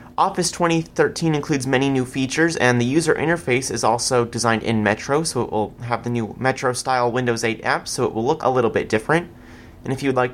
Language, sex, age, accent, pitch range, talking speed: English, male, 30-49, American, 115-145 Hz, 215 wpm